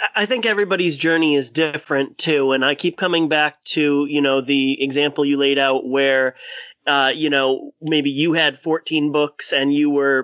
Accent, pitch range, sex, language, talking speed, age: American, 140-170 Hz, male, English, 190 wpm, 30-49